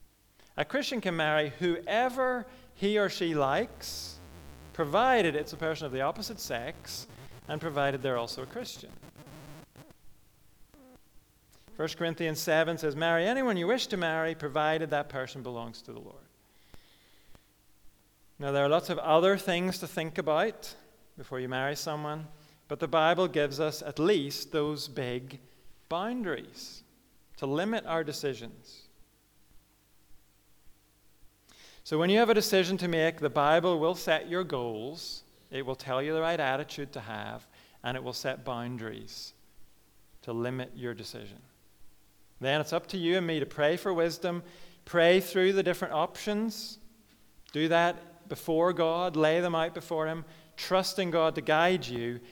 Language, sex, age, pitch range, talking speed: English, male, 40-59, 125-170 Hz, 150 wpm